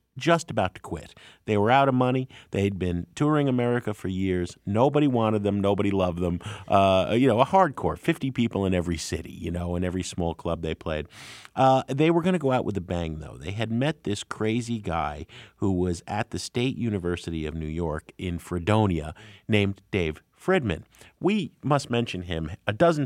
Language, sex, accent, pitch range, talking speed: English, male, American, 90-130 Hz, 200 wpm